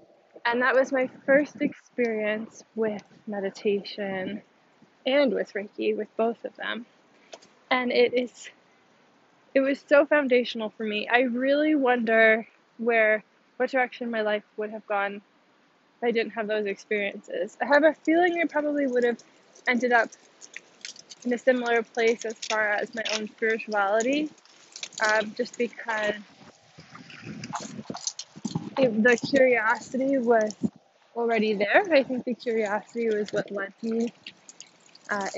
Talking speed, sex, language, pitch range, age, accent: 135 wpm, female, English, 215-255 Hz, 10-29, American